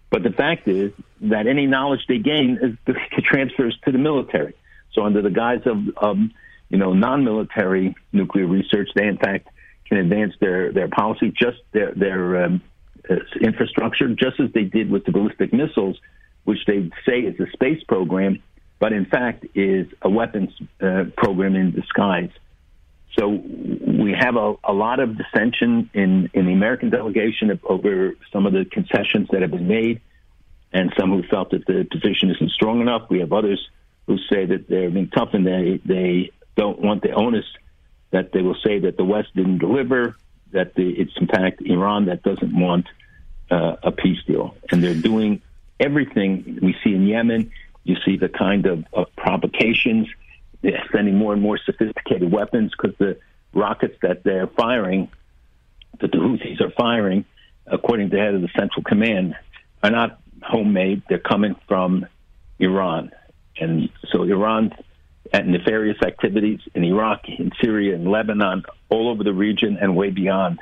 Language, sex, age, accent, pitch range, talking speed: English, male, 60-79, American, 90-105 Hz, 170 wpm